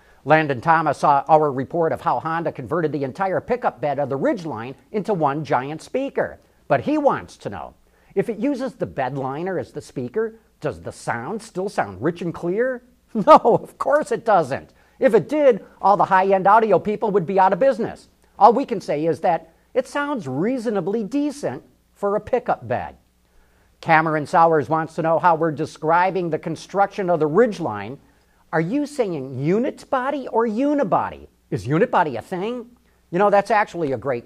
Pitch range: 150-225 Hz